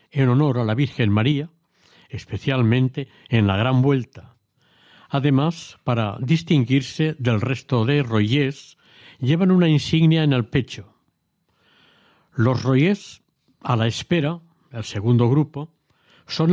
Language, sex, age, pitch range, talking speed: Spanish, male, 60-79, 120-160 Hz, 120 wpm